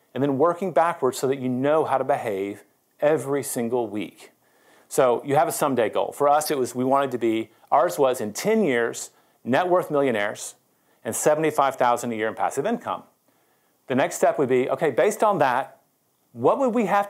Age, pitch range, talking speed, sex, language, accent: 40-59, 125-165 Hz, 195 wpm, male, English, American